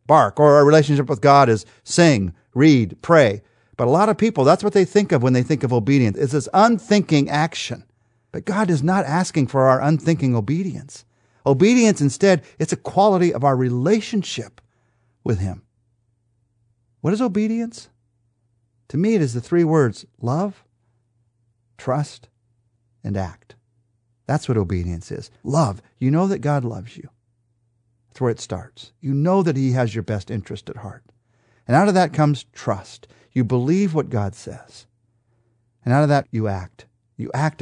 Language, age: English, 50-69